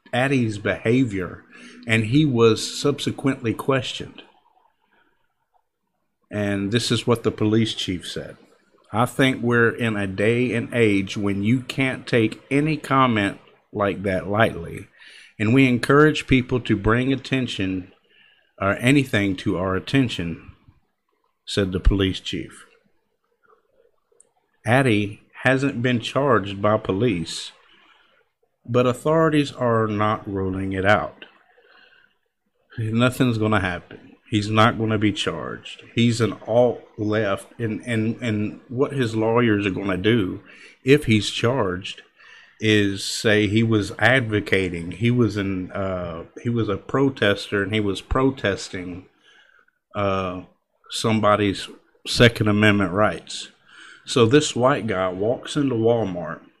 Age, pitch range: 50-69, 100-125 Hz